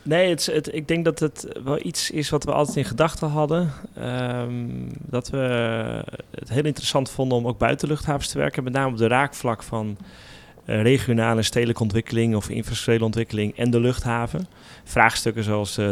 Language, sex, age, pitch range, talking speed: English, male, 30-49, 105-130 Hz, 165 wpm